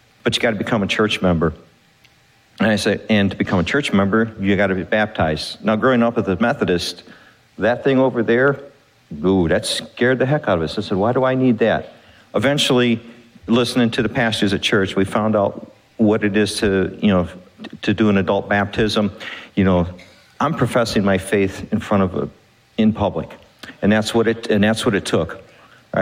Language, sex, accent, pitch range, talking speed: English, male, American, 100-120 Hz, 210 wpm